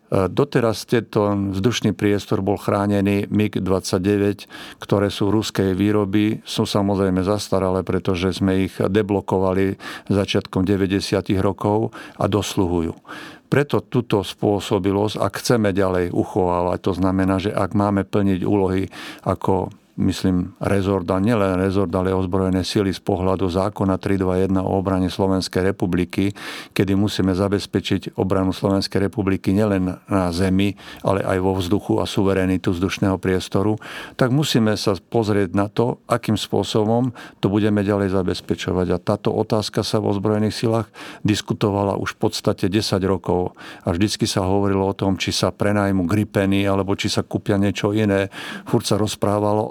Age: 50-69